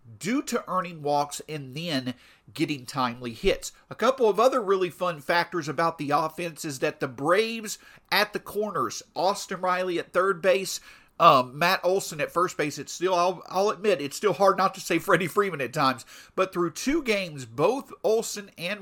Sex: male